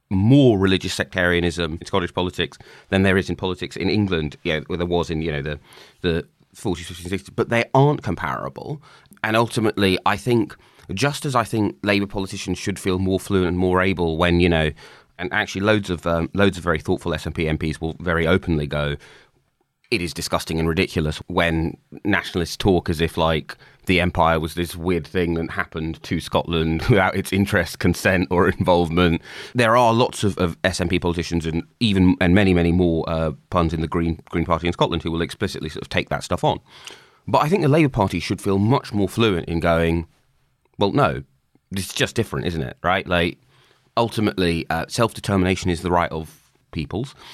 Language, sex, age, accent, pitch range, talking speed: English, male, 30-49, British, 80-100 Hz, 195 wpm